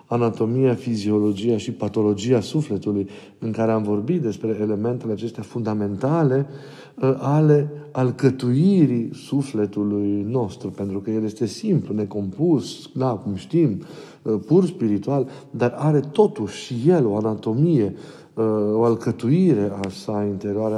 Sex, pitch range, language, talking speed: male, 105-130 Hz, Romanian, 120 wpm